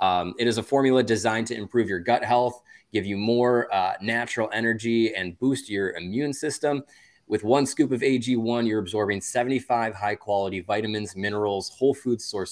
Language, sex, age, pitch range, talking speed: English, male, 20-39, 95-120 Hz, 175 wpm